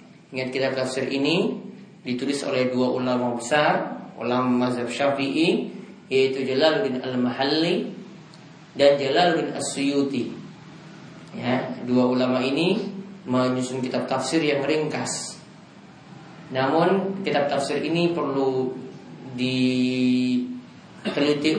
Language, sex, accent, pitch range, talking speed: Indonesian, male, native, 130-185 Hz, 95 wpm